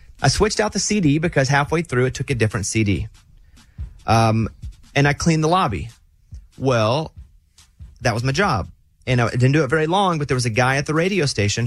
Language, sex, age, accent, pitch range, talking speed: English, male, 30-49, American, 105-145 Hz, 205 wpm